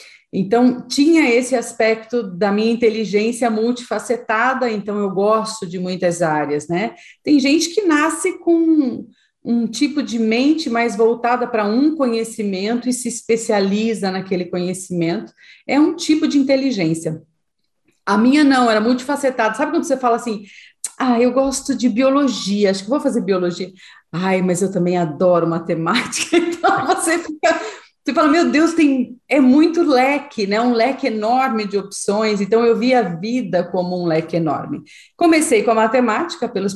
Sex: female